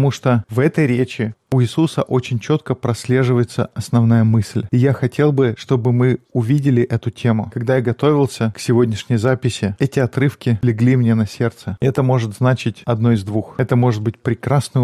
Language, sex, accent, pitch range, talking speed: Russian, male, native, 115-135 Hz, 170 wpm